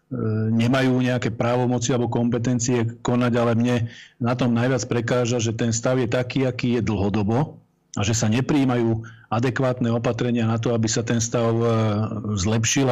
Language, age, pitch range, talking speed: Slovak, 40-59, 115-120 Hz, 155 wpm